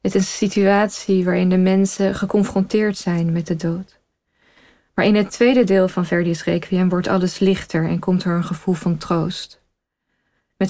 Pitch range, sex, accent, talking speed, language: 180-195 Hz, female, Dutch, 175 wpm, Dutch